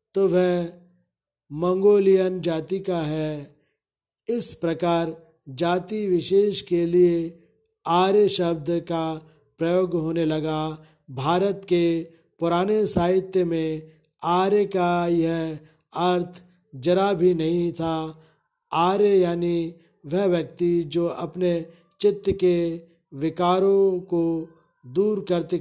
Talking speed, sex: 105 wpm, male